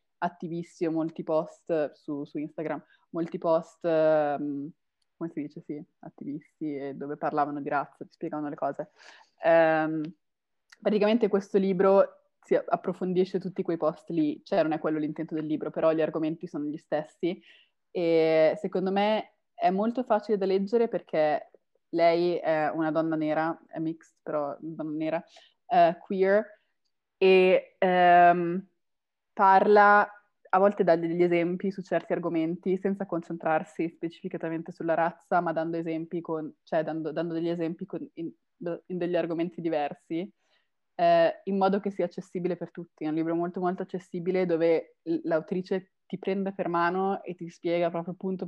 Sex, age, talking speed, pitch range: female, 20-39, 145 wpm, 160-190 Hz